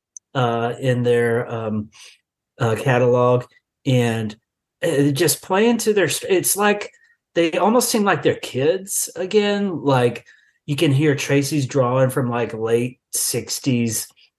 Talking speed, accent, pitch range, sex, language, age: 135 wpm, American, 120-140 Hz, male, English, 30-49